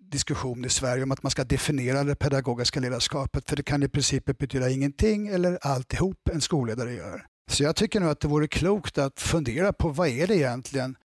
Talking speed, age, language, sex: 205 wpm, 60-79, Swedish, male